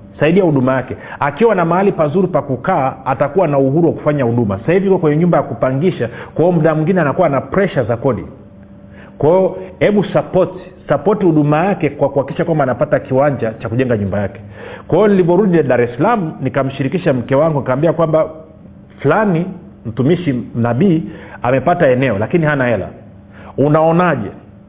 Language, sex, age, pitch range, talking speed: Swahili, male, 40-59, 130-175 Hz, 155 wpm